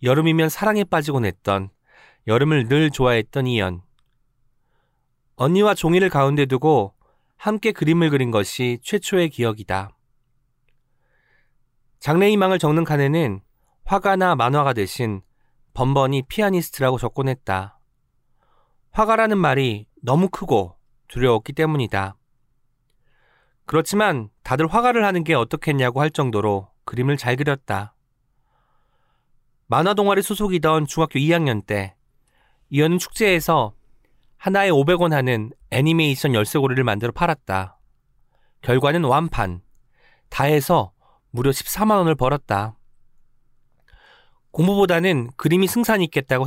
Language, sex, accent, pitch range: Korean, male, native, 120-160 Hz